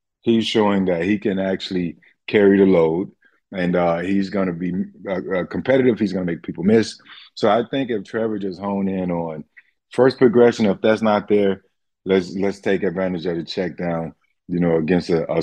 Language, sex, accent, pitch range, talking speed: English, male, American, 90-115 Hz, 195 wpm